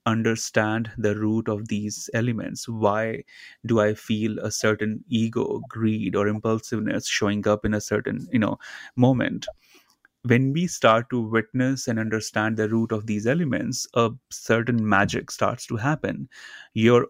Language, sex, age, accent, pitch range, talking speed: English, male, 30-49, Indian, 110-120 Hz, 150 wpm